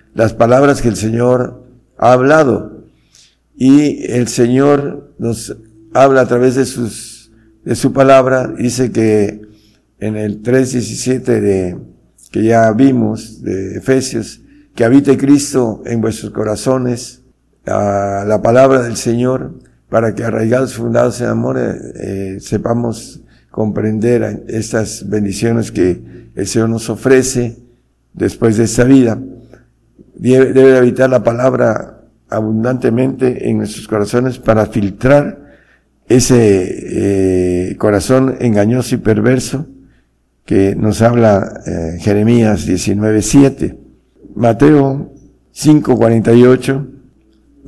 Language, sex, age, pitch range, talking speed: Spanish, male, 60-79, 110-130 Hz, 110 wpm